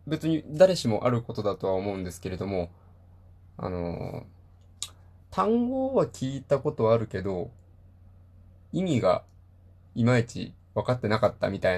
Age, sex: 20-39, male